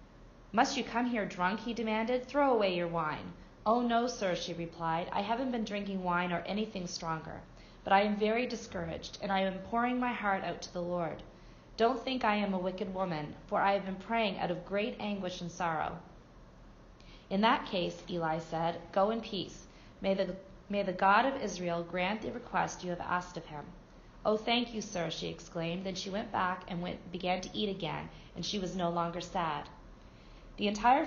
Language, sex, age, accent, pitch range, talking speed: English, female, 30-49, American, 180-220 Hz, 195 wpm